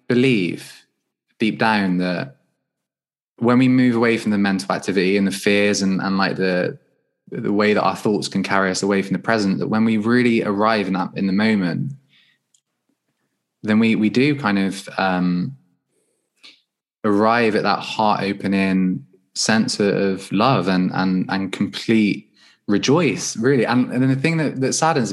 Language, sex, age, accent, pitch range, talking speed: English, male, 20-39, British, 95-120 Hz, 165 wpm